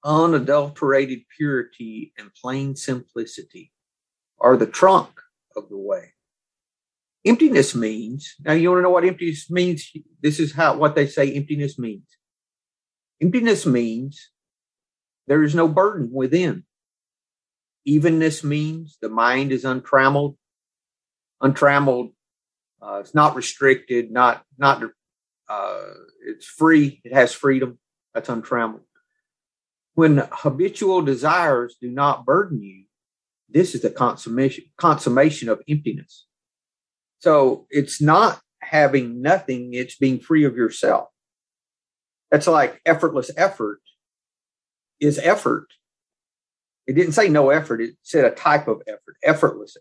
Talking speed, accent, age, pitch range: 120 wpm, American, 40-59, 130-165 Hz